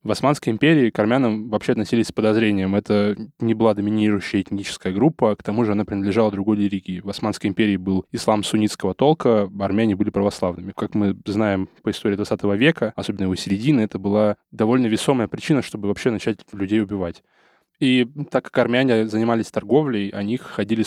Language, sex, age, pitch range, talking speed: Russian, male, 10-29, 100-115 Hz, 175 wpm